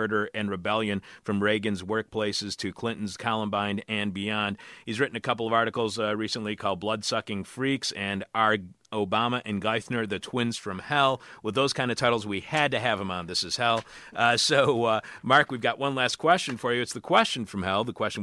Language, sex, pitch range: English, male, 105-130 Hz